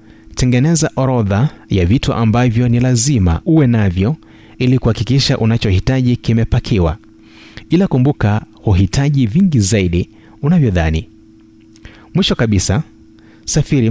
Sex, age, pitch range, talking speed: male, 30-49, 100-125 Hz, 95 wpm